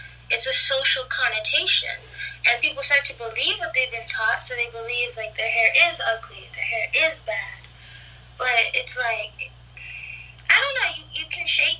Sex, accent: female, American